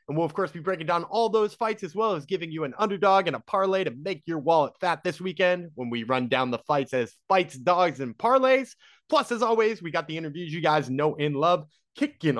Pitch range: 145-200 Hz